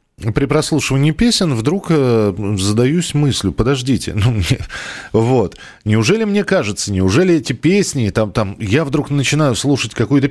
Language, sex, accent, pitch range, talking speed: Russian, male, native, 110-155 Hz, 130 wpm